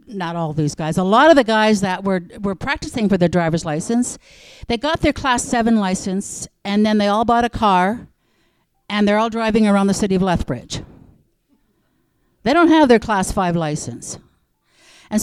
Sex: female